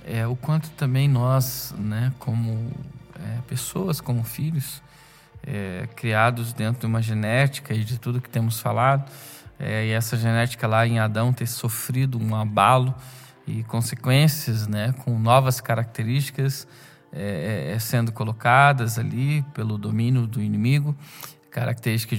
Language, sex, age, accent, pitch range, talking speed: Portuguese, male, 20-39, Brazilian, 115-145 Hz, 135 wpm